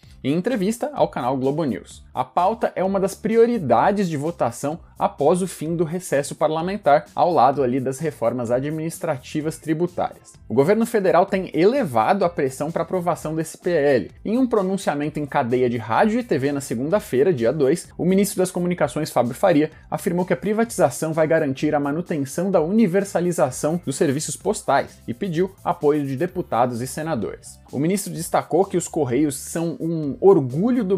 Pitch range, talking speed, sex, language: 140-185 Hz, 165 wpm, male, Portuguese